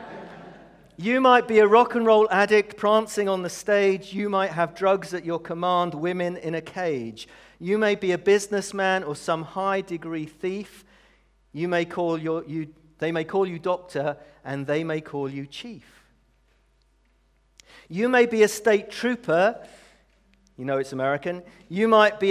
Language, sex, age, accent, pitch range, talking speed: English, male, 40-59, British, 150-200 Hz, 160 wpm